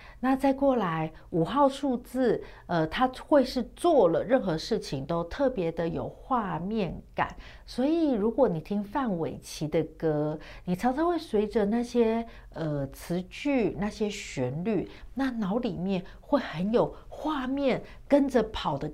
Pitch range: 170-255 Hz